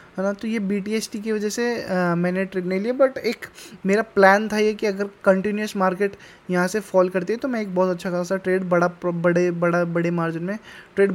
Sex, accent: male, native